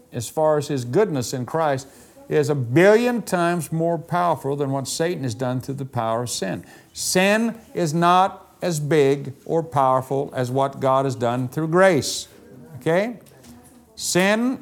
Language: English